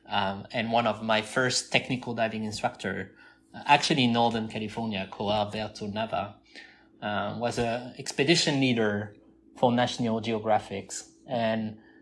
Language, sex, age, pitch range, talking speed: English, male, 30-49, 105-130 Hz, 130 wpm